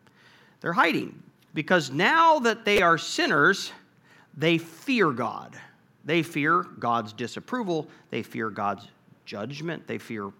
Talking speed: 120 wpm